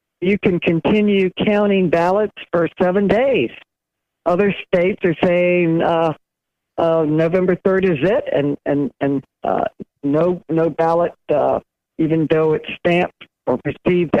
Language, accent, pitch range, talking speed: English, American, 155-190 Hz, 135 wpm